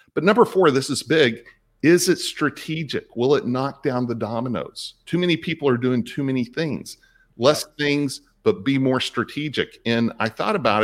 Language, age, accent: English, 50-69, American